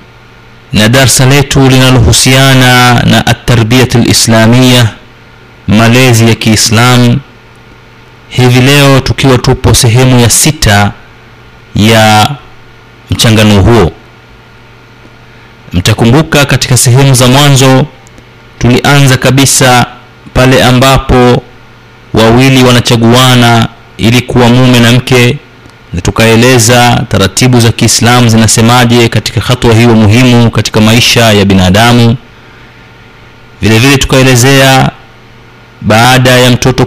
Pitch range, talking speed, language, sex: 115-125 Hz, 90 wpm, Swahili, male